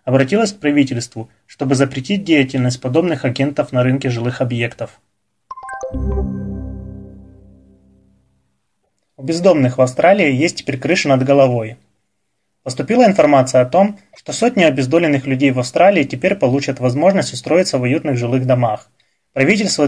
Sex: male